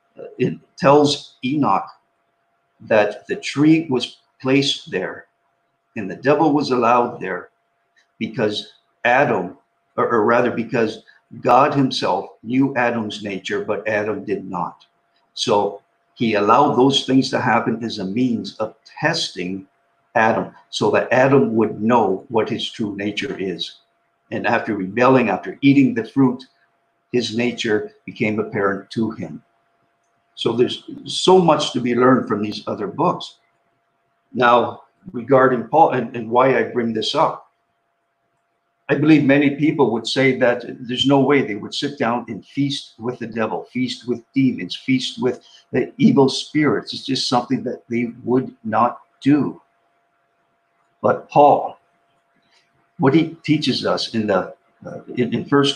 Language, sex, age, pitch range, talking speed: English, male, 50-69, 115-140 Hz, 145 wpm